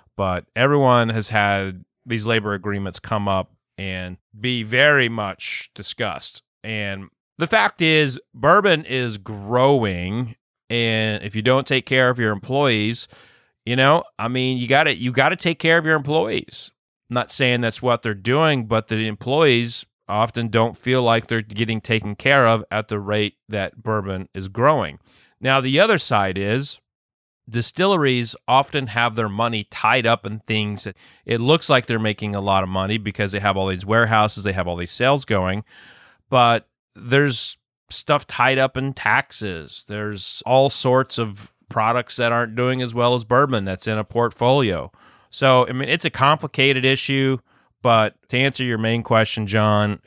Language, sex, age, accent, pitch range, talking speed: English, male, 30-49, American, 105-130 Hz, 170 wpm